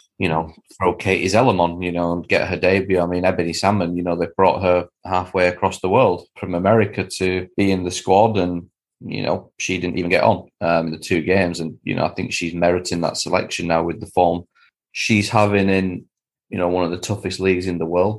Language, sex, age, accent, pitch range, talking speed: English, male, 30-49, British, 85-100 Hz, 230 wpm